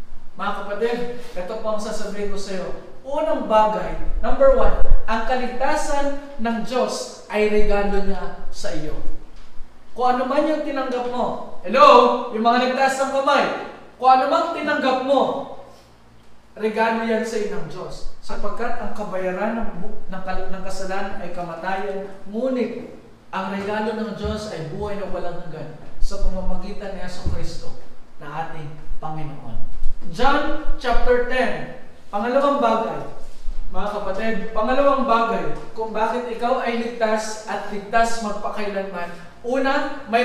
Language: Filipino